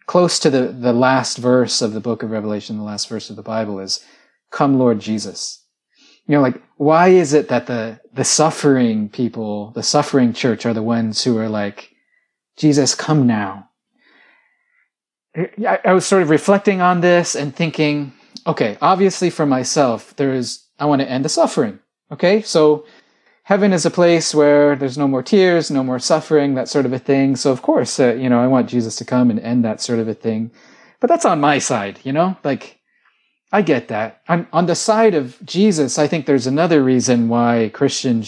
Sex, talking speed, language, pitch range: male, 200 wpm, English, 115-165 Hz